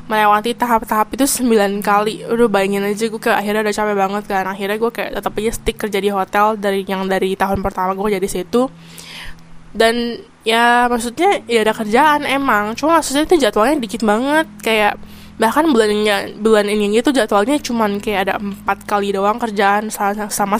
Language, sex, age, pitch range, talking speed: Indonesian, female, 10-29, 200-235 Hz, 170 wpm